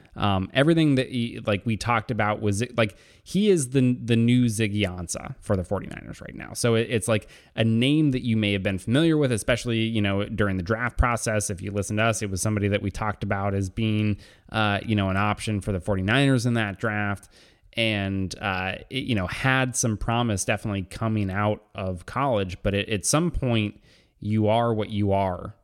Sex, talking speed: male, 210 wpm